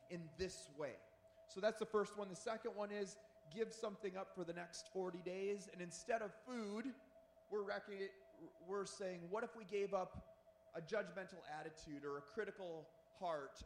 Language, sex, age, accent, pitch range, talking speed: English, male, 30-49, American, 180-230 Hz, 175 wpm